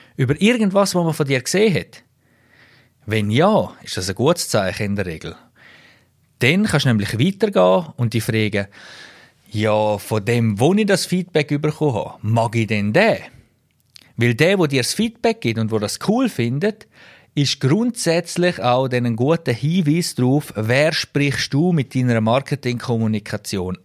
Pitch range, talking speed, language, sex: 110-150 Hz, 160 wpm, German, male